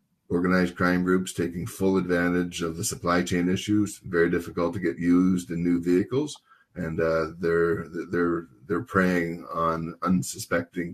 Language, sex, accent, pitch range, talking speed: English, male, American, 85-95 Hz, 150 wpm